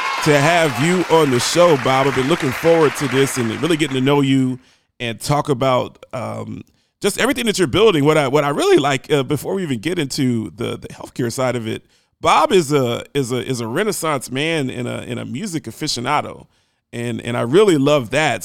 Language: English